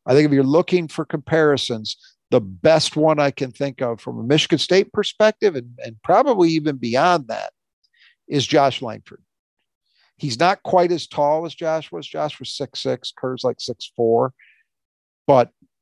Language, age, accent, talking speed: English, 50-69, American, 170 wpm